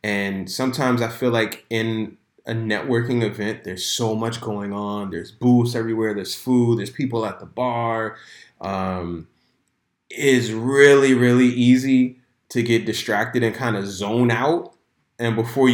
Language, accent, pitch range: English, American, 105-120 Hz